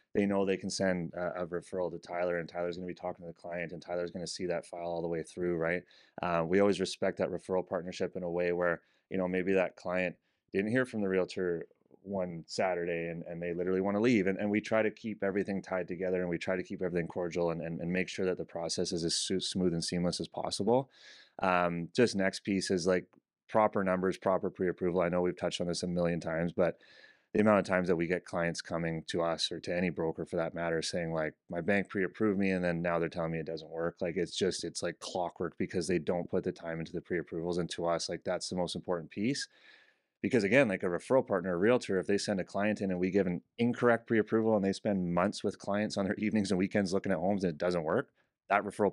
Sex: male